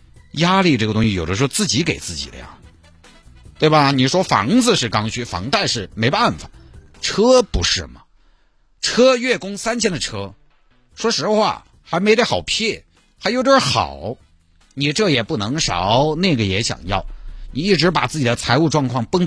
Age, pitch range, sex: 50-69, 95-160 Hz, male